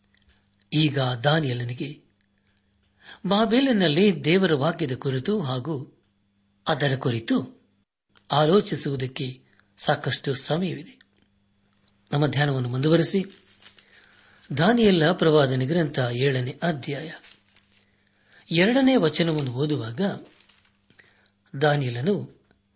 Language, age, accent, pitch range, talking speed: Kannada, 60-79, native, 100-165 Hz, 60 wpm